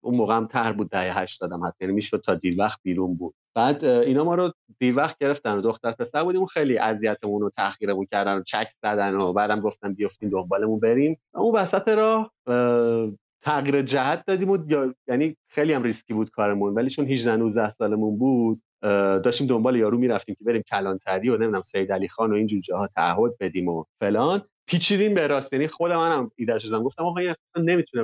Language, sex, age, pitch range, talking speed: English, male, 30-49, 105-165 Hz, 190 wpm